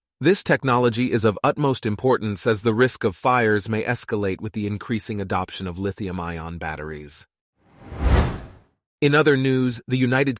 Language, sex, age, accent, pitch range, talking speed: English, male, 30-49, American, 100-130 Hz, 145 wpm